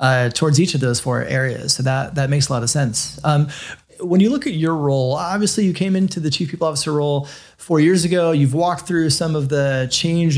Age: 30-49